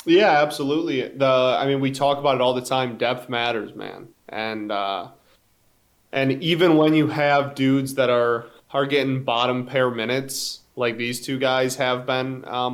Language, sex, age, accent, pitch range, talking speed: English, male, 20-39, American, 120-140 Hz, 175 wpm